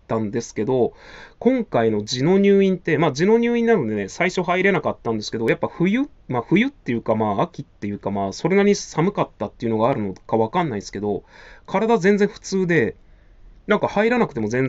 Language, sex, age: Japanese, male, 20-39